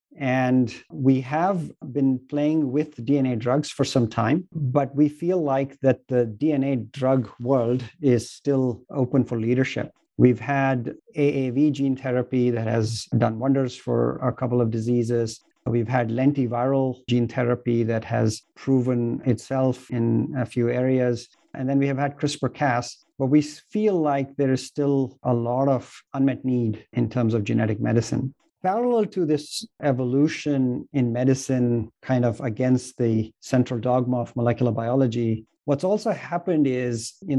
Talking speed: 150 wpm